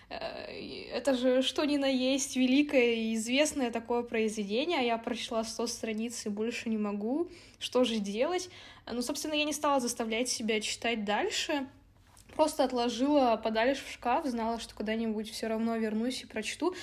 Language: English